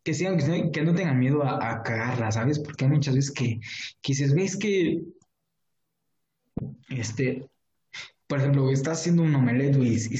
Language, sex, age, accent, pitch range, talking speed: Spanish, male, 20-39, Mexican, 125-150 Hz, 175 wpm